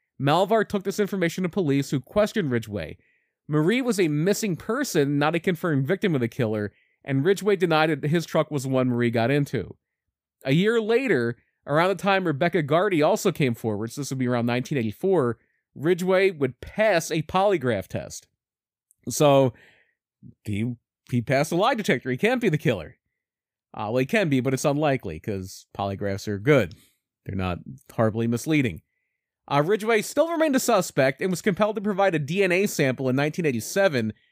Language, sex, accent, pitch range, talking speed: English, male, American, 130-190 Hz, 175 wpm